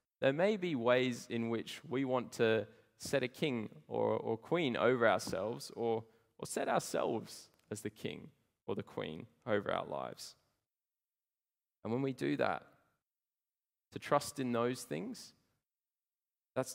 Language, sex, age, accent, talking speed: English, male, 10-29, Australian, 145 wpm